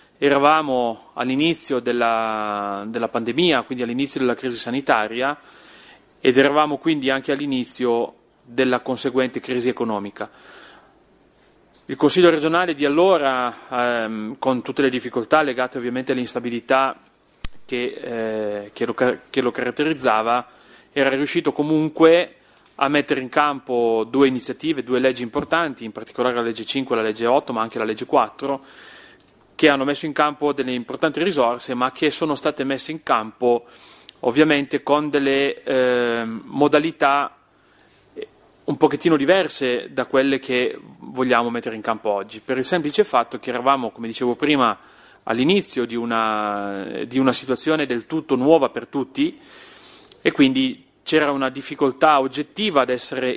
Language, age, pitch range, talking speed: Italian, 30-49, 120-145 Hz, 140 wpm